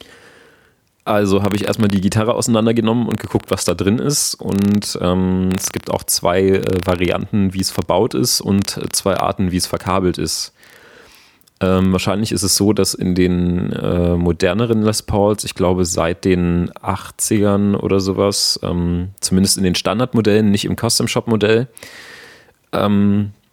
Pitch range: 95-110 Hz